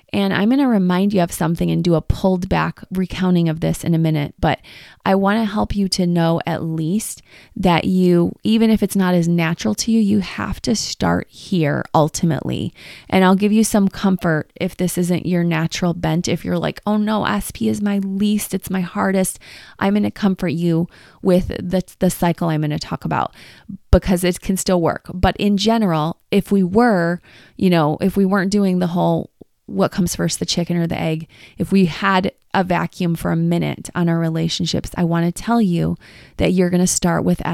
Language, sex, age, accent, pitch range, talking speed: English, female, 20-39, American, 170-195 Hz, 210 wpm